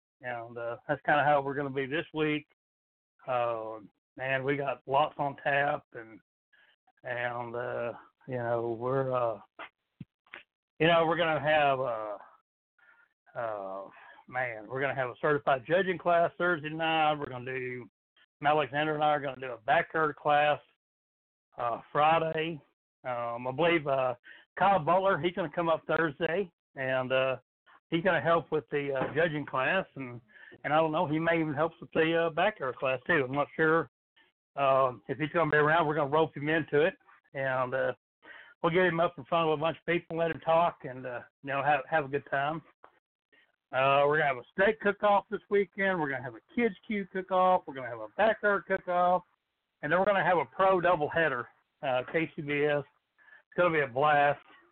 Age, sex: 60-79, male